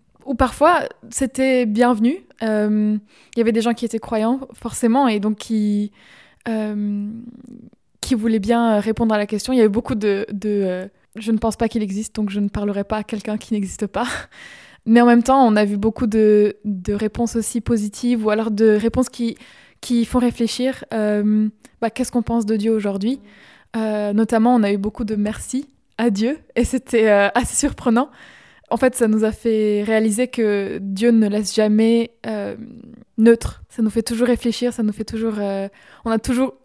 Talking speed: 205 wpm